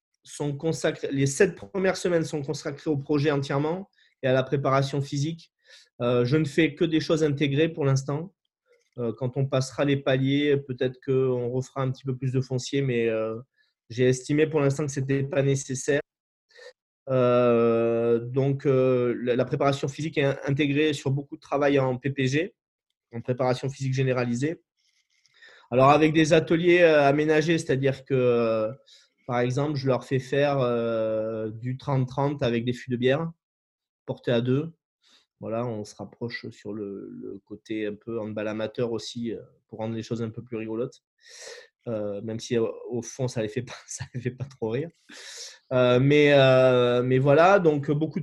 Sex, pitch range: male, 125-155 Hz